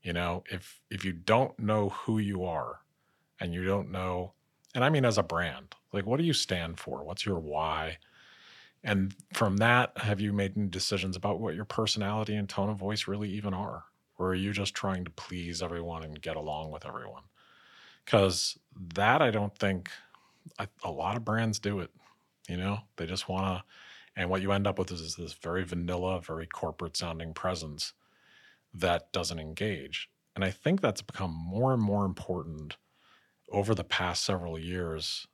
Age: 40-59